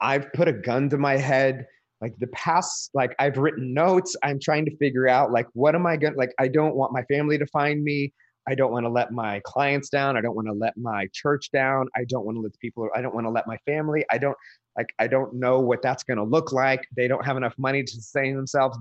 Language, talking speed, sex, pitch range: English, 265 wpm, male, 120-150 Hz